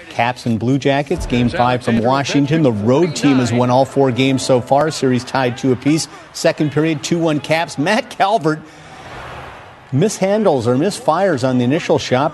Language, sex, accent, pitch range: English, male, American, 120-145 Hz